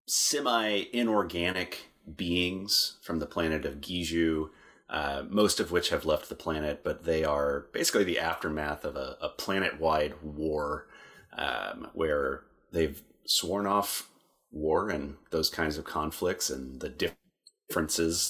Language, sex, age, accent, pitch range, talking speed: English, male, 30-49, American, 75-90 Hz, 130 wpm